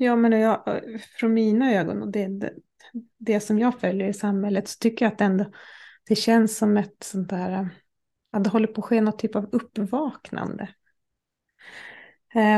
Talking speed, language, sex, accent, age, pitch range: 175 wpm, Swedish, female, native, 30-49, 200-230 Hz